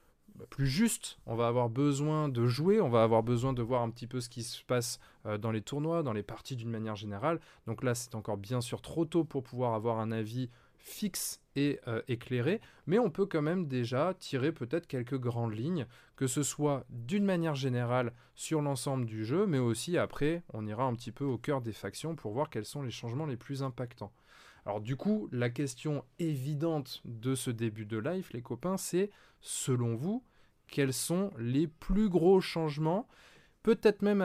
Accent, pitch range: French, 120-170 Hz